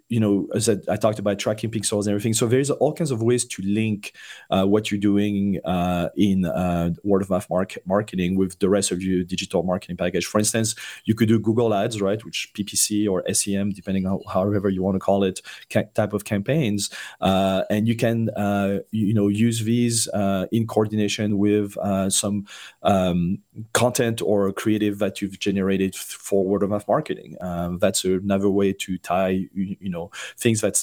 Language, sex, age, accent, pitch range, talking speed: English, male, 30-49, French, 95-105 Hz, 200 wpm